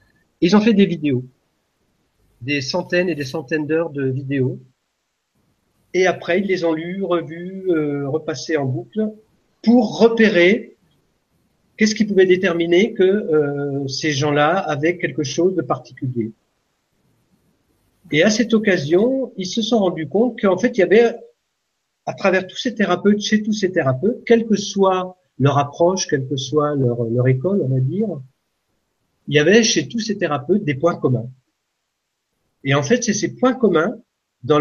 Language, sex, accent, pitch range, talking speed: French, male, French, 145-190 Hz, 165 wpm